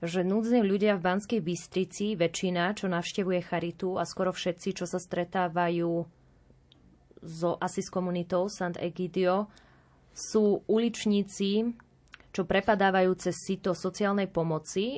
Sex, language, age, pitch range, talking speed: female, Slovak, 20-39, 170-190 Hz, 120 wpm